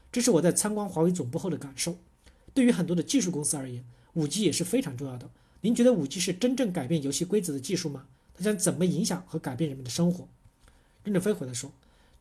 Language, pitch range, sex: Chinese, 155-220 Hz, male